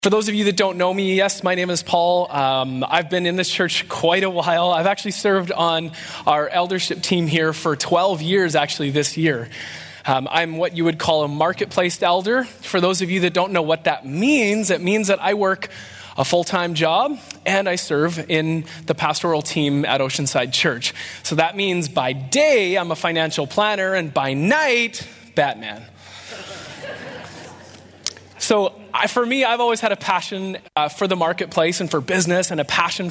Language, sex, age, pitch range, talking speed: English, male, 20-39, 155-195 Hz, 190 wpm